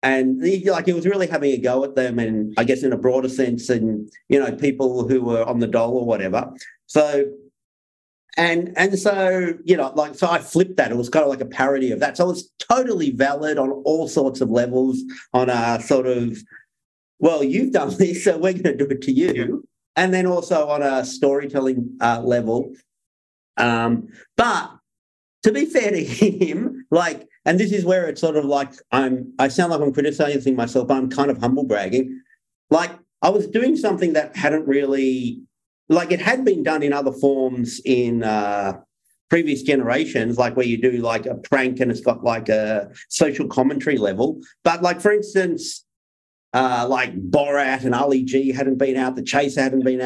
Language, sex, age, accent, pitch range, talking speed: English, male, 50-69, Australian, 125-170 Hz, 200 wpm